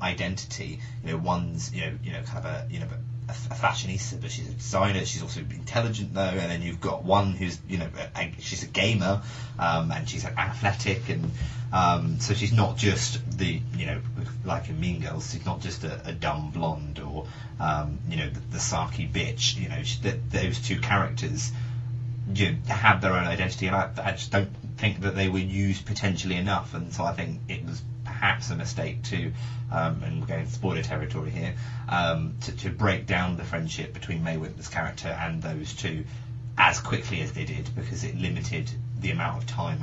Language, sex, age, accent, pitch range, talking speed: English, male, 30-49, British, 100-120 Hz, 195 wpm